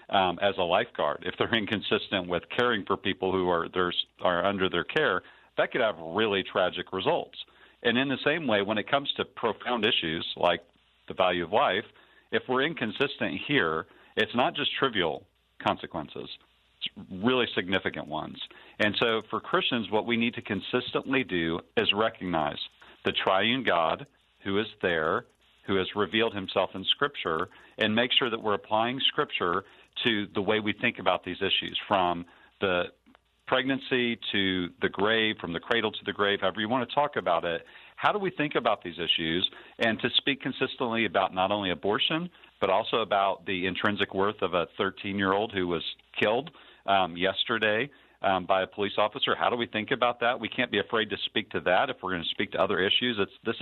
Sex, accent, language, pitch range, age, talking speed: male, American, English, 95-120 Hz, 50-69, 190 wpm